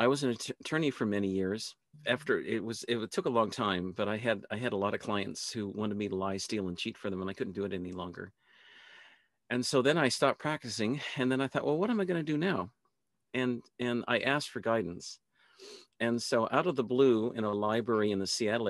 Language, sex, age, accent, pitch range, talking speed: English, male, 50-69, American, 105-130 Hz, 245 wpm